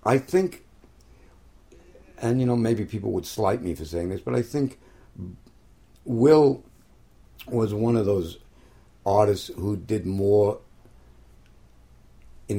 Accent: American